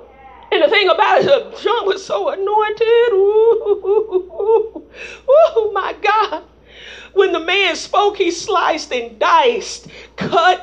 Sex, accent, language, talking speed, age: female, American, English, 135 wpm, 40-59